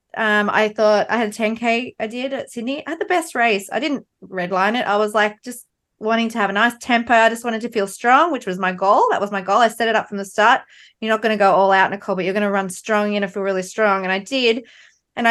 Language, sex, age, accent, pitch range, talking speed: English, female, 20-39, Australian, 190-230 Hz, 295 wpm